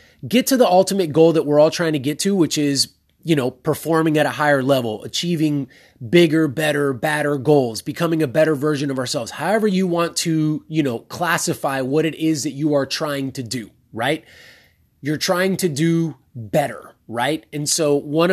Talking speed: 190 wpm